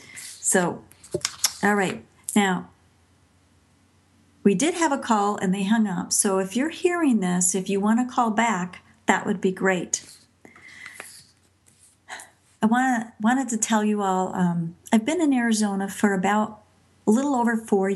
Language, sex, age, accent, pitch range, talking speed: English, female, 50-69, American, 185-225 Hz, 150 wpm